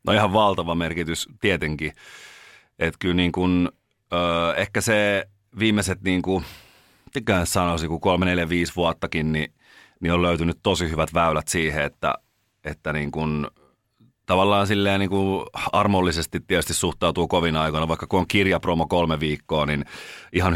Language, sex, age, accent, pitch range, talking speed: Finnish, male, 30-49, native, 80-95 Hz, 135 wpm